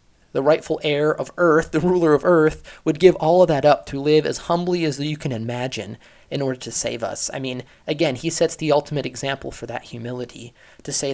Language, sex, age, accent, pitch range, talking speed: English, male, 30-49, American, 125-155 Hz, 220 wpm